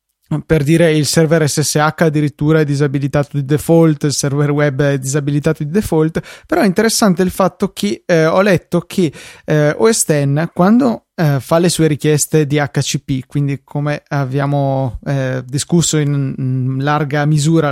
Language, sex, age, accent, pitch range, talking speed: Italian, male, 20-39, native, 145-175 Hz, 155 wpm